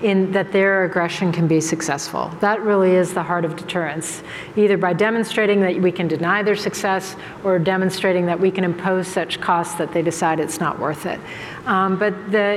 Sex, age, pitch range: female, 50-69, 180-200 Hz